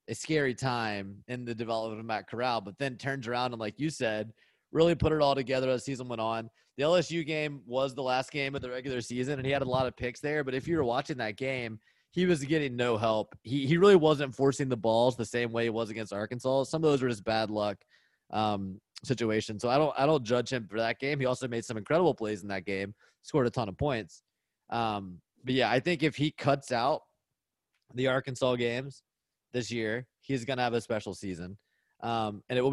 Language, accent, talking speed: English, American, 235 wpm